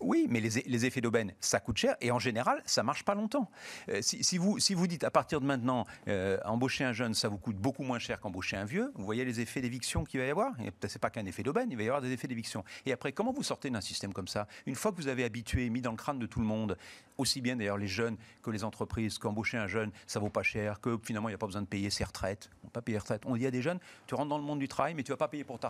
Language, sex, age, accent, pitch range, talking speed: French, male, 40-59, French, 110-135 Hz, 320 wpm